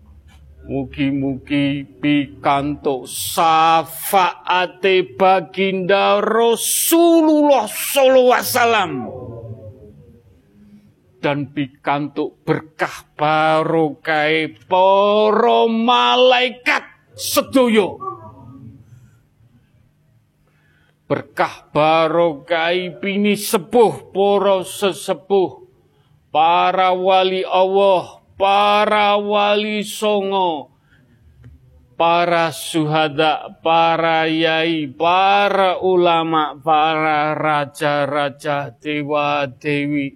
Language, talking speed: Indonesian, 55 wpm